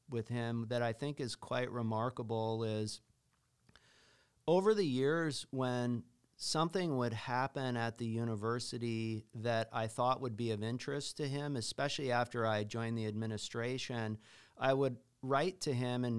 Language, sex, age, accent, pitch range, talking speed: English, male, 40-59, American, 115-135 Hz, 150 wpm